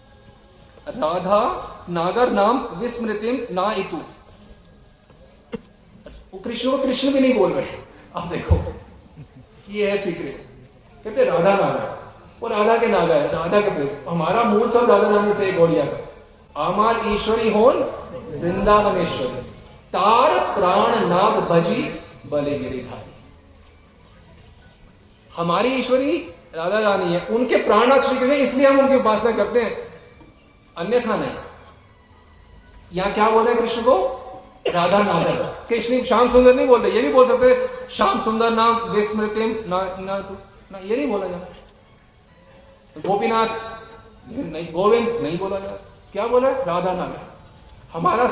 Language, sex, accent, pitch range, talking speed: Hindi, male, native, 160-235 Hz, 130 wpm